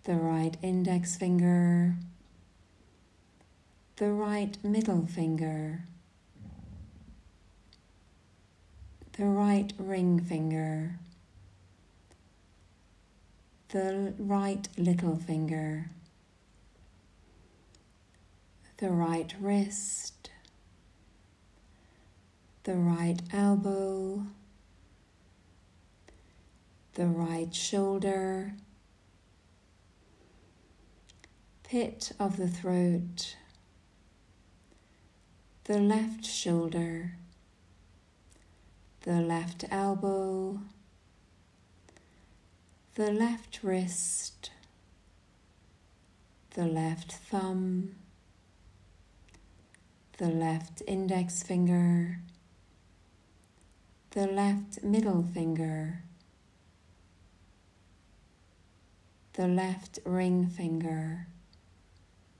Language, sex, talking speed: English, female, 50 wpm